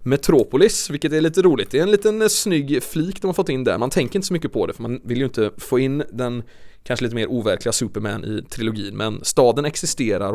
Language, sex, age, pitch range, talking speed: English, male, 20-39, 110-140 Hz, 240 wpm